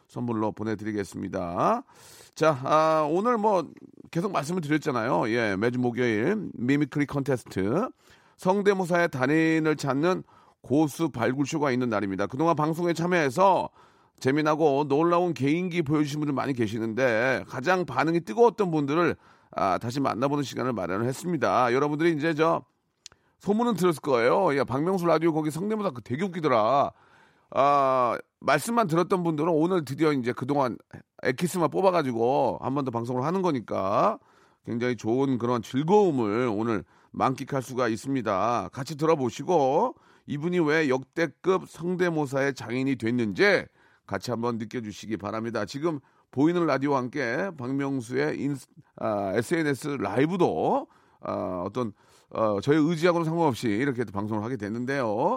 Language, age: Korean, 40-59